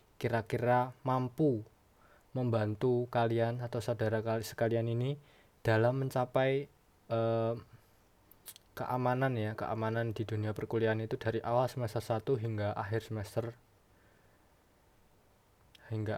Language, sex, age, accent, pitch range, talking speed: Indonesian, male, 20-39, native, 110-125 Hz, 95 wpm